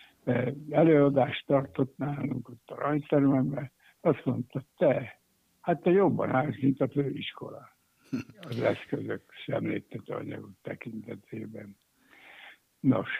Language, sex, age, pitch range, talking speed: Hungarian, male, 60-79, 130-150 Hz, 100 wpm